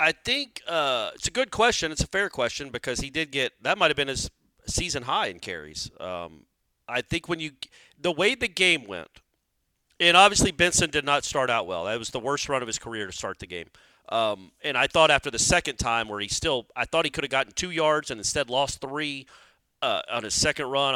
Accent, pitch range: American, 115-165 Hz